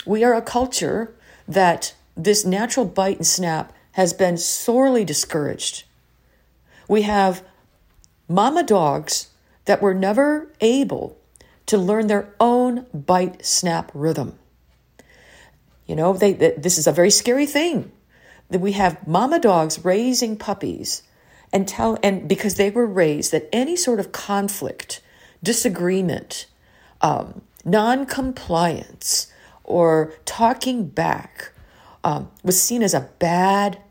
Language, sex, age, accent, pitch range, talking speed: English, female, 50-69, American, 165-210 Hz, 125 wpm